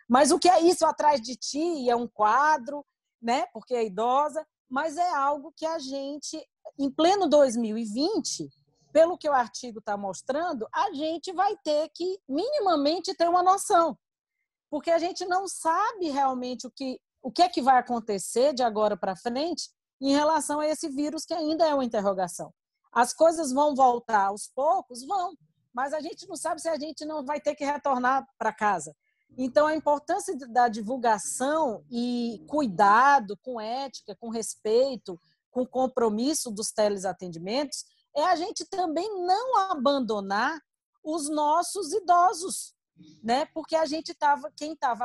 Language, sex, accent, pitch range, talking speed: Portuguese, female, Brazilian, 235-325 Hz, 160 wpm